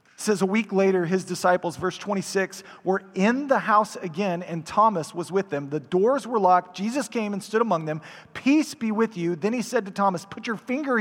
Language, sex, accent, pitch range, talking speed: English, male, American, 155-220 Hz, 220 wpm